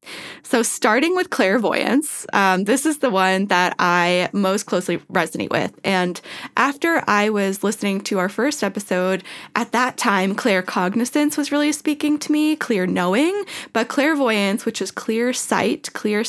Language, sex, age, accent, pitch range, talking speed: English, female, 10-29, American, 190-250 Hz, 155 wpm